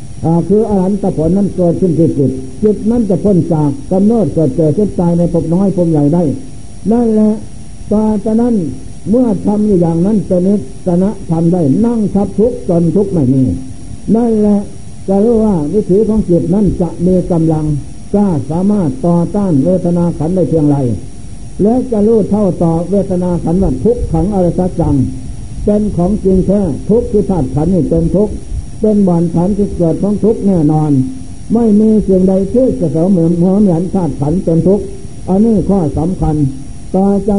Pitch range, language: 160-205 Hz, Thai